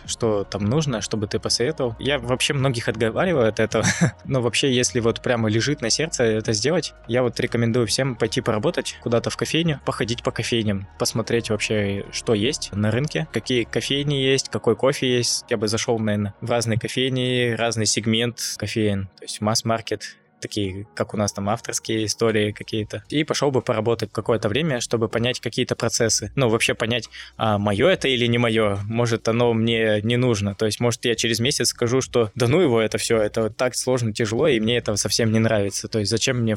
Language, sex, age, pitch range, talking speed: Russian, male, 20-39, 110-125 Hz, 195 wpm